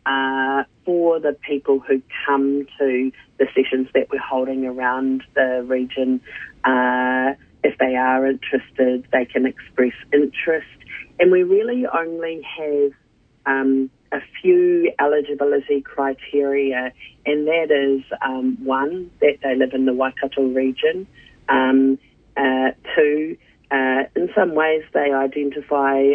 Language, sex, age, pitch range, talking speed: English, female, 30-49, 130-150 Hz, 125 wpm